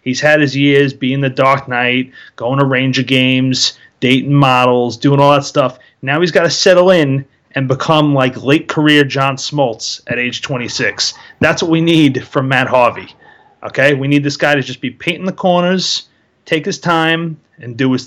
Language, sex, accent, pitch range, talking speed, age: English, male, American, 130-165 Hz, 190 wpm, 30-49